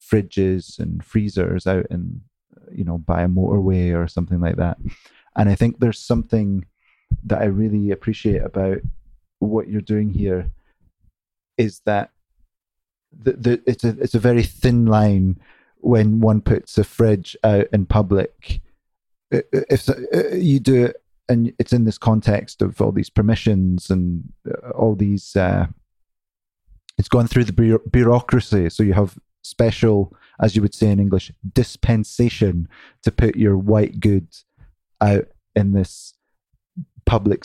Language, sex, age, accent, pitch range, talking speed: English, male, 30-49, British, 90-110 Hz, 145 wpm